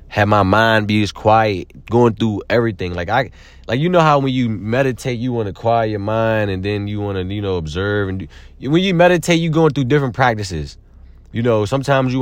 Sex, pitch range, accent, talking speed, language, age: male, 90-115 Hz, American, 225 wpm, English, 30-49